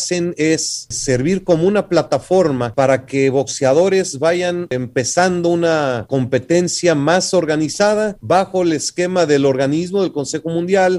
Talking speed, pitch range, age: 120 wpm, 140-180 Hz, 40-59